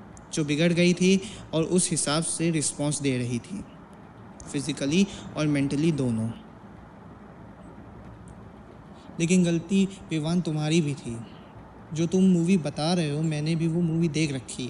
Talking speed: 140 wpm